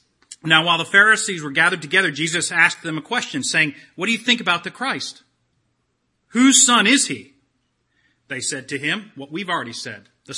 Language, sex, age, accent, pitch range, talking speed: English, male, 40-59, American, 135-175 Hz, 190 wpm